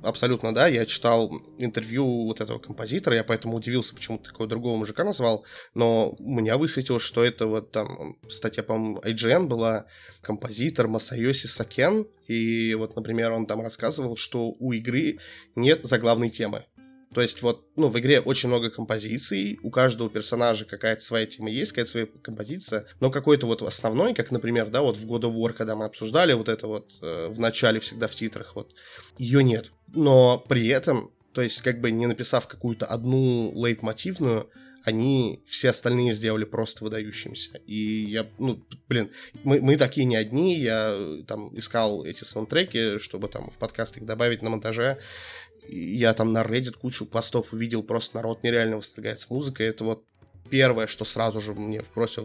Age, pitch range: 20-39, 110-125 Hz